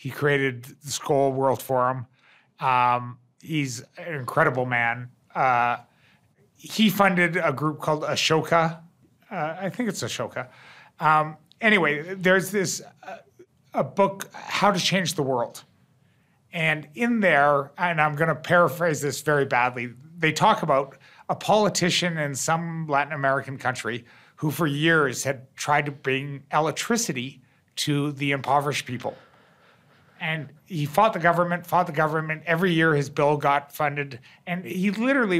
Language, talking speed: English, 145 wpm